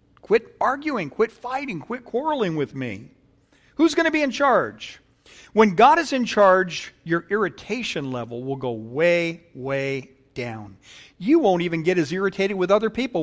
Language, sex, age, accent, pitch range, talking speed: English, male, 50-69, American, 135-220 Hz, 165 wpm